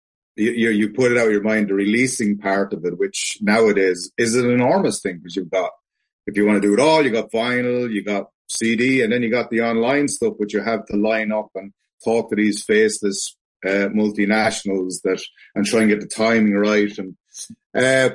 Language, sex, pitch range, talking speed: English, male, 100-130 Hz, 220 wpm